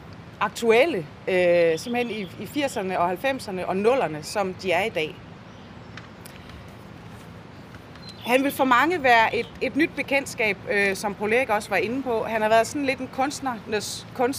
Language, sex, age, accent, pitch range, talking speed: Danish, female, 30-49, native, 200-255 Hz, 165 wpm